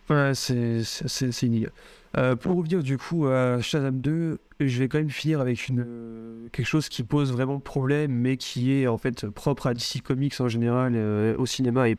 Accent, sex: French, male